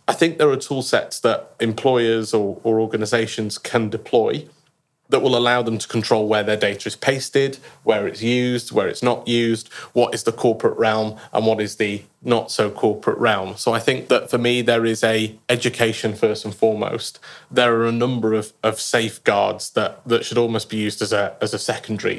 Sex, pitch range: male, 110-125 Hz